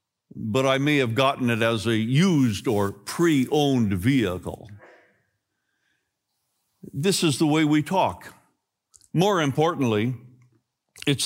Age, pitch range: 60-79, 125-160 Hz